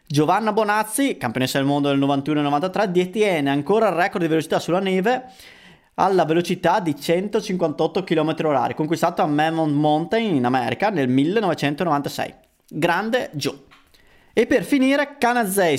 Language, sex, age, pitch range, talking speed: Italian, male, 20-39, 150-210 Hz, 135 wpm